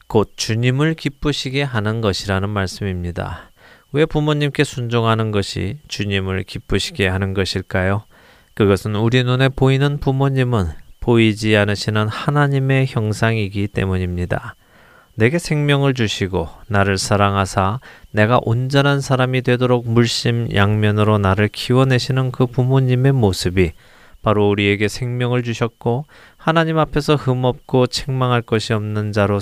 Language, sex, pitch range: Korean, male, 100-130 Hz